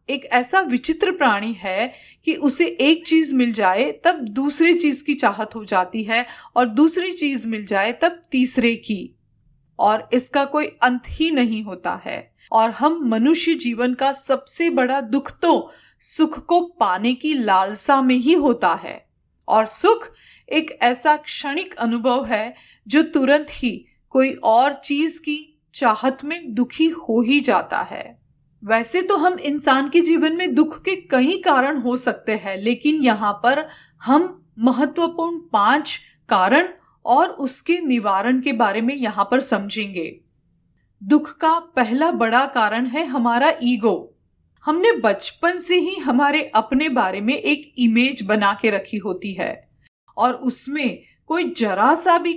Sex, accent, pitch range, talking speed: female, native, 235-315 Hz, 150 wpm